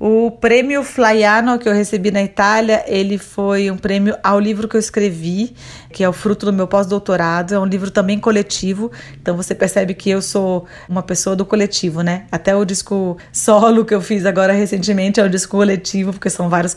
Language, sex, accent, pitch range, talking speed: Portuguese, female, Brazilian, 185-220 Hz, 200 wpm